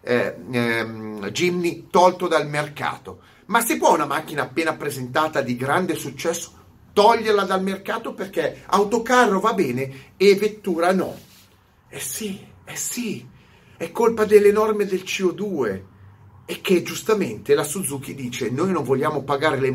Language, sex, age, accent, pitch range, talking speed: Italian, male, 40-59, native, 120-185 Hz, 145 wpm